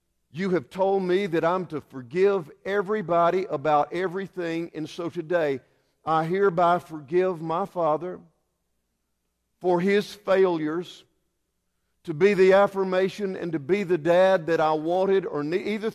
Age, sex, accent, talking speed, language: 50-69, male, American, 135 wpm, English